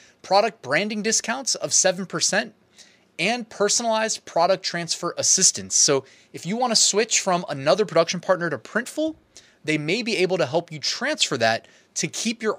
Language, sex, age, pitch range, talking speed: English, male, 20-39, 145-195 Hz, 160 wpm